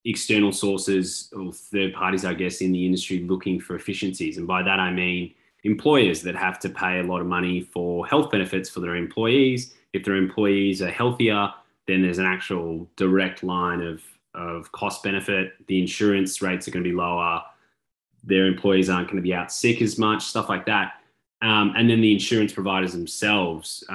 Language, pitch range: English, 90-100 Hz